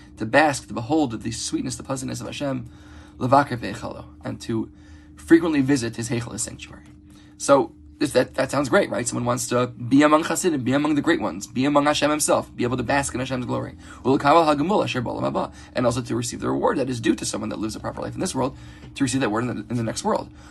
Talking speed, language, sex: 220 wpm, English, male